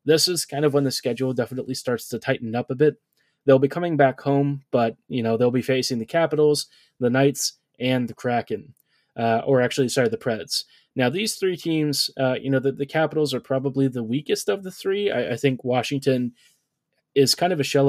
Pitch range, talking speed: 125-150 Hz, 215 wpm